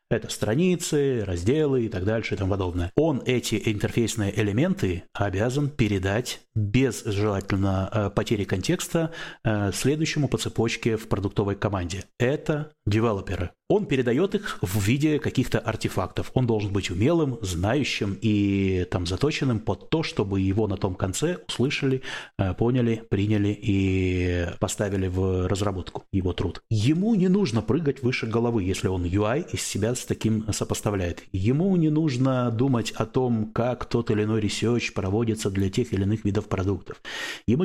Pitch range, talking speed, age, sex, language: 100-125 Hz, 145 wpm, 30-49, male, Russian